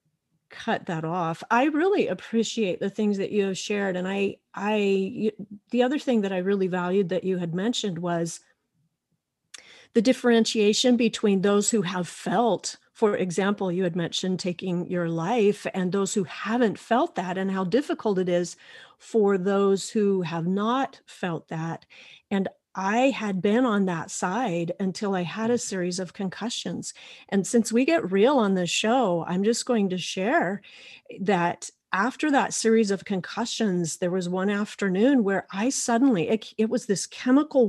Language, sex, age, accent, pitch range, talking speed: English, female, 40-59, American, 185-230 Hz, 165 wpm